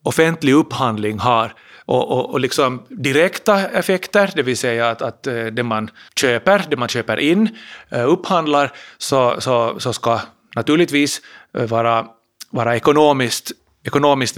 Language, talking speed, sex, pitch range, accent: Finnish, 130 wpm, male, 120-170 Hz, native